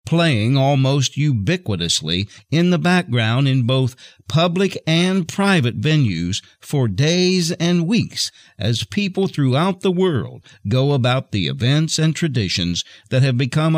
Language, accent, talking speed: English, American, 130 wpm